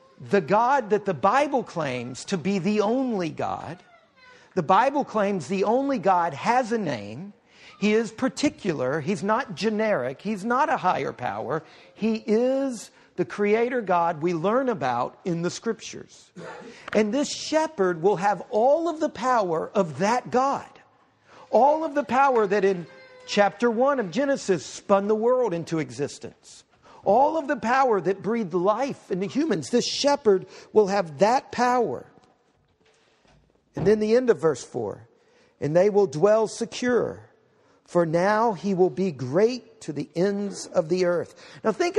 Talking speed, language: 160 wpm, English